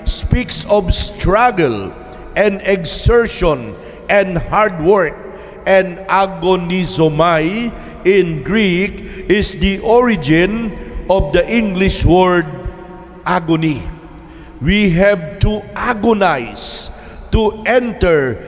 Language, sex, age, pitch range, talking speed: English, male, 50-69, 170-205 Hz, 85 wpm